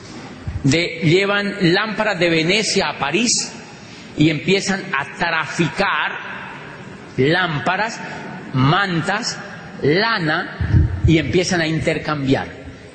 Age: 40-59